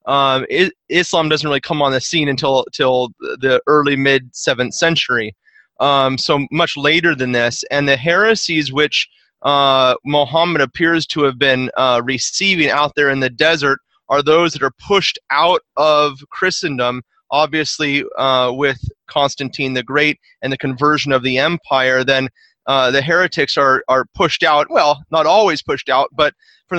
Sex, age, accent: male, 30-49, American